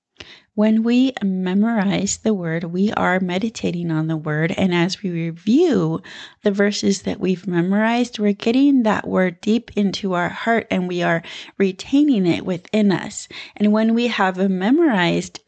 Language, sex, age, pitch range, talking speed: English, female, 30-49, 180-220 Hz, 155 wpm